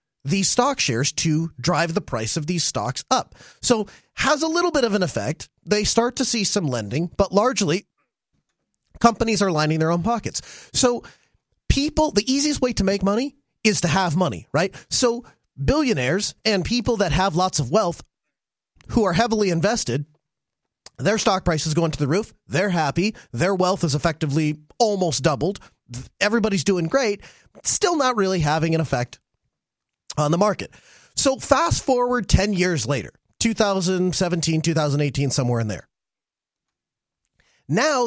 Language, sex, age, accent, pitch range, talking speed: English, male, 30-49, American, 160-230 Hz, 155 wpm